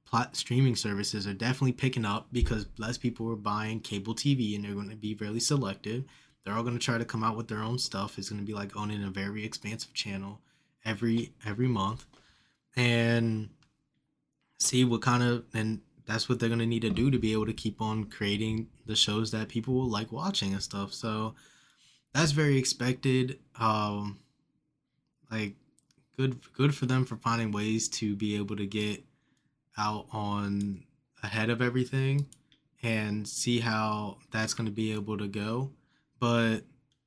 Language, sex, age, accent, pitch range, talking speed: English, male, 20-39, American, 105-130 Hz, 175 wpm